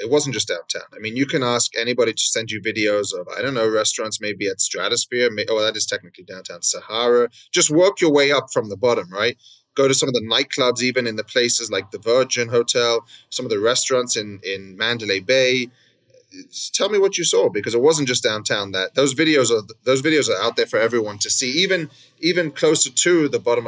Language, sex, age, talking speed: English, male, 30-49, 225 wpm